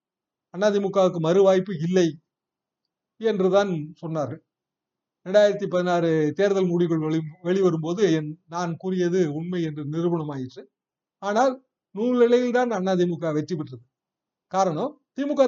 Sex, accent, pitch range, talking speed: male, native, 170-215 Hz, 95 wpm